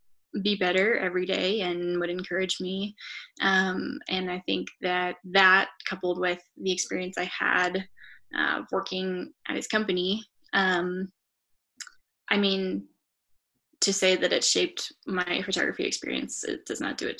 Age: 10-29